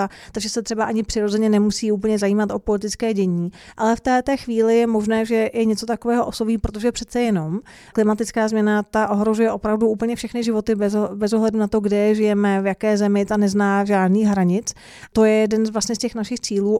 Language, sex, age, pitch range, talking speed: Czech, female, 30-49, 200-225 Hz, 200 wpm